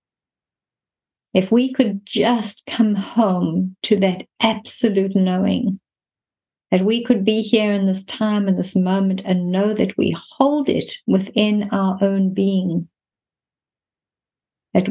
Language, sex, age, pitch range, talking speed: English, female, 50-69, 180-205 Hz, 130 wpm